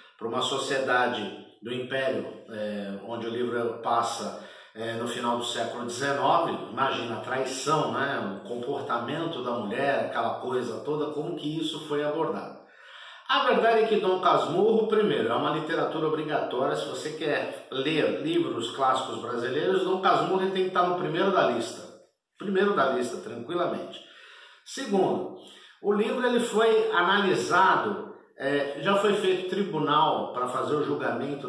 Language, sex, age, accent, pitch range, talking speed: Portuguese, male, 50-69, Brazilian, 130-195 Hz, 150 wpm